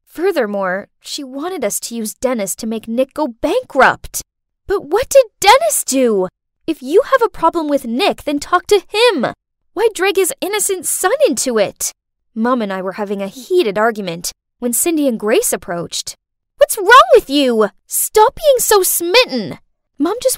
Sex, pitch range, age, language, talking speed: female, 235-380 Hz, 10-29, English, 170 wpm